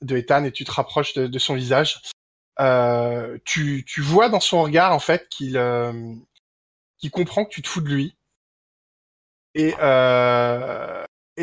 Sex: male